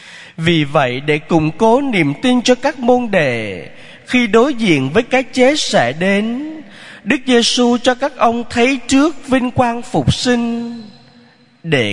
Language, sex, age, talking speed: Vietnamese, male, 30-49, 155 wpm